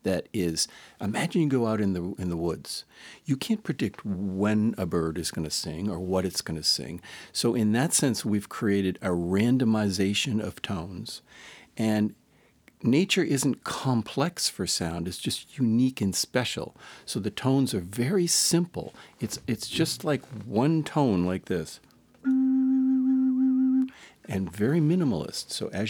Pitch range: 95-145 Hz